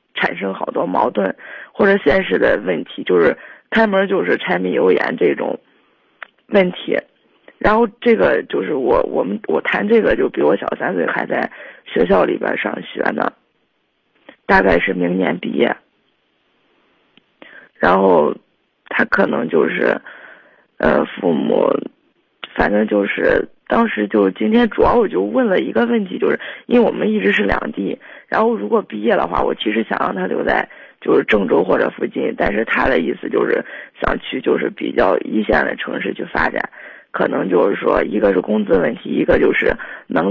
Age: 20-39